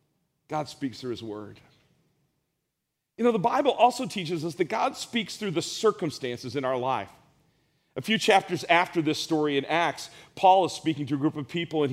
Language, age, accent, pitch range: English, 40-59, American, 150-190 Hz